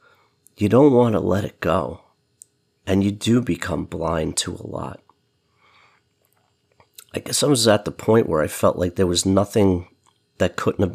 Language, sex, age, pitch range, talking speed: English, male, 40-59, 90-110 Hz, 175 wpm